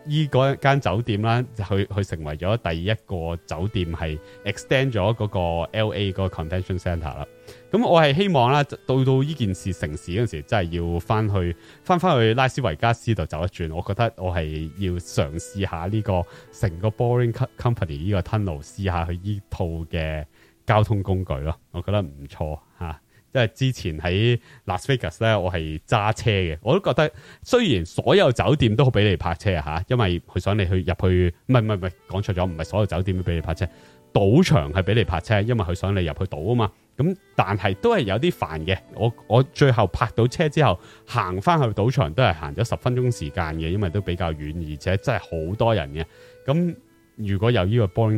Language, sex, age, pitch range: English, male, 30-49, 90-120 Hz